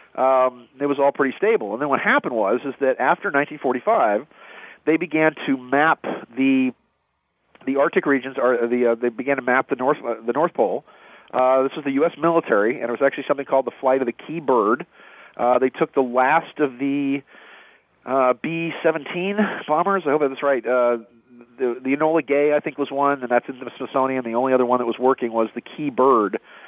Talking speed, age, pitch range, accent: 205 wpm, 40-59, 125-150 Hz, American